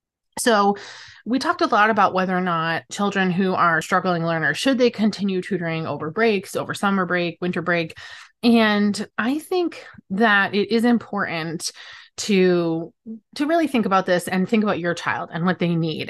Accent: American